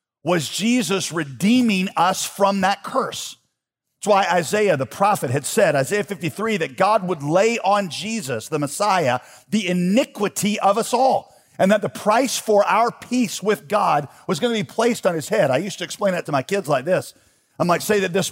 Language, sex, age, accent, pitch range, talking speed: English, male, 50-69, American, 150-205 Hz, 200 wpm